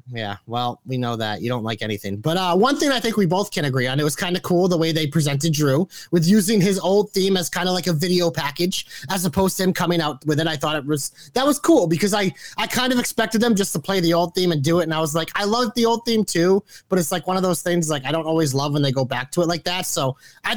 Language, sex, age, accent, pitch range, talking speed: English, male, 30-49, American, 155-205 Hz, 305 wpm